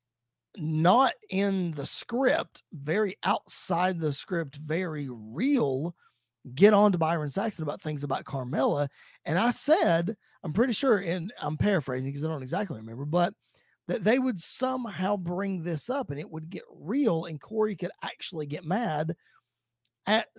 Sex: male